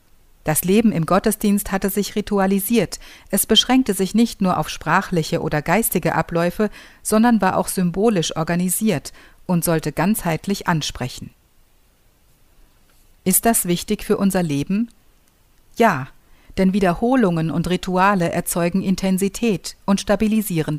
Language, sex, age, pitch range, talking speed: German, female, 50-69, 165-205 Hz, 120 wpm